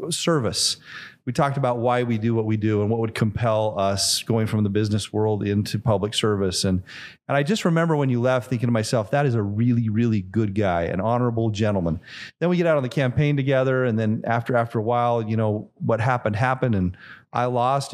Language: English